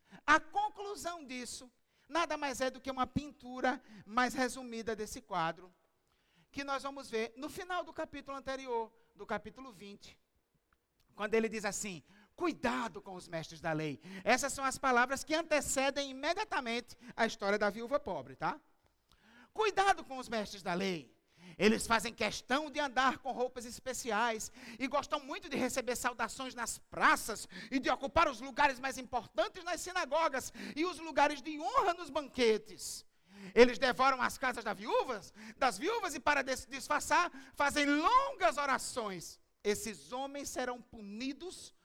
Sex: male